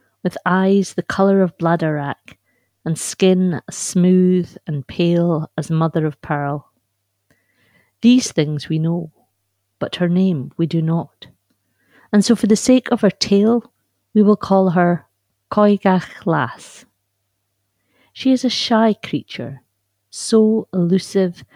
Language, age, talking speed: English, 50-69, 130 wpm